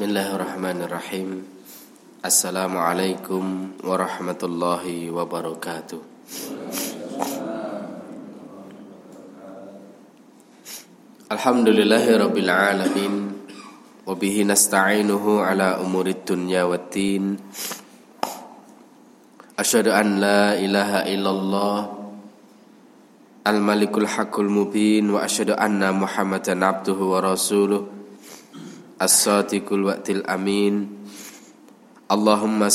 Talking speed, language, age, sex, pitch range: 55 wpm, Indonesian, 20-39, male, 95-105 Hz